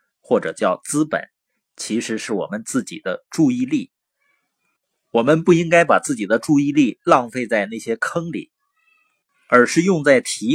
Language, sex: Chinese, male